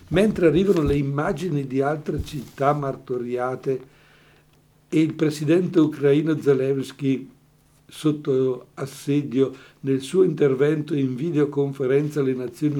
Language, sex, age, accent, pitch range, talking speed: Italian, male, 60-79, native, 135-160 Hz, 105 wpm